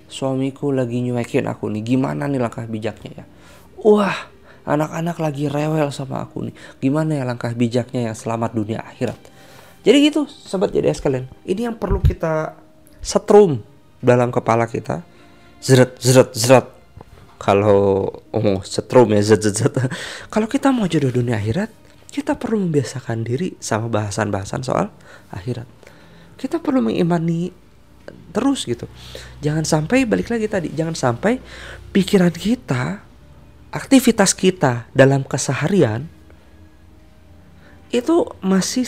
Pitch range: 110-170 Hz